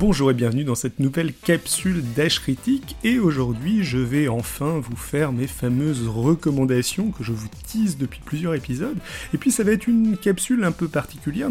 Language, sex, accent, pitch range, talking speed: French, male, French, 130-185 Hz, 190 wpm